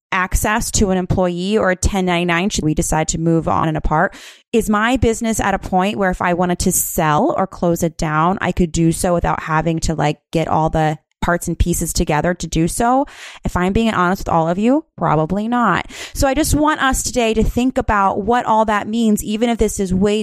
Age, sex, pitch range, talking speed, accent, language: 20-39, female, 170-210 Hz, 230 wpm, American, English